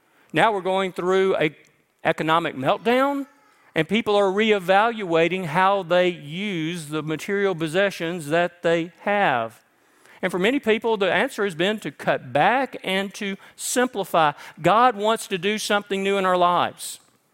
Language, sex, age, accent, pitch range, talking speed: English, male, 50-69, American, 160-205 Hz, 150 wpm